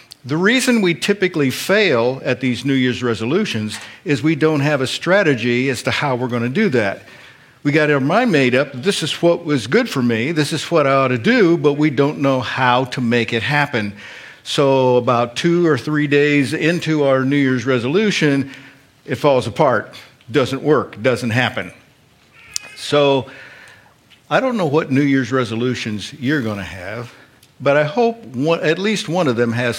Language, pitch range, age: English, 115-150 Hz, 50-69